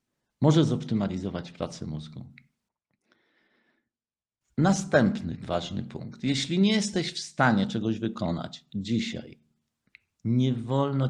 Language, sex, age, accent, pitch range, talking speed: Polish, male, 50-69, native, 100-150 Hz, 90 wpm